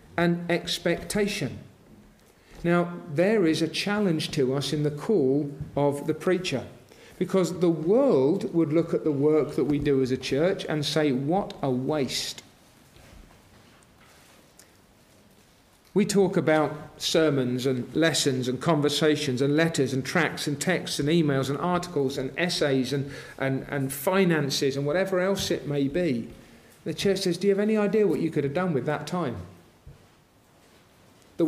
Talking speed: 155 wpm